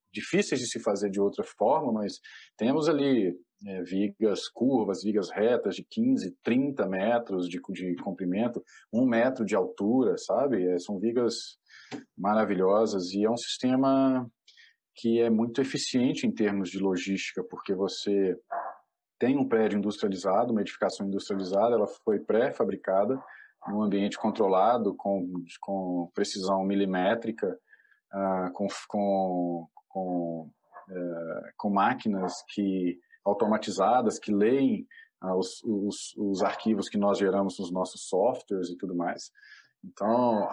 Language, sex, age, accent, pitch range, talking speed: Portuguese, male, 40-59, Brazilian, 95-115 Hz, 125 wpm